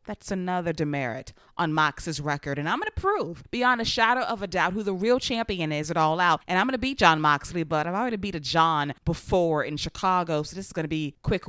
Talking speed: 250 wpm